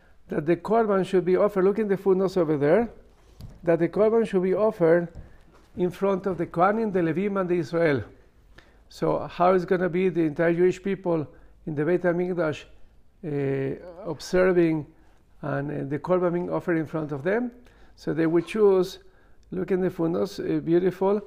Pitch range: 155-185 Hz